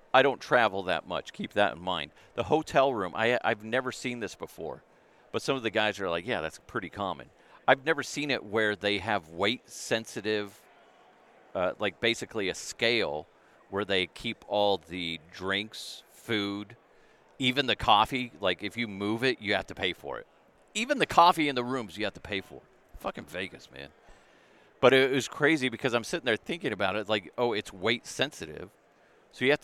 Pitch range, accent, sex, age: 95-125 Hz, American, male, 40-59